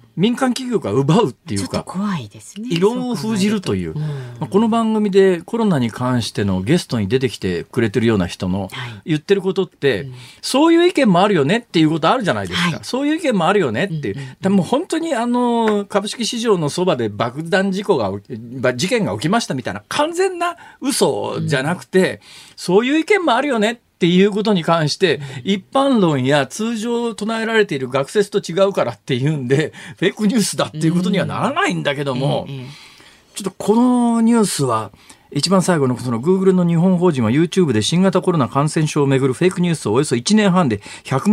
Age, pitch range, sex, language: 40-59, 140-215 Hz, male, Japanese